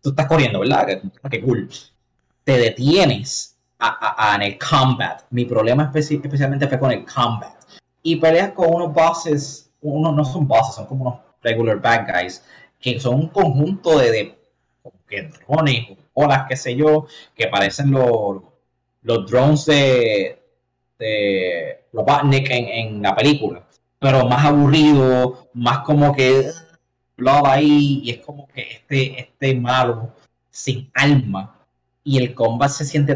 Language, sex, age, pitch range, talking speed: English, male, 20-39, 115-150 Hz, 150 wpm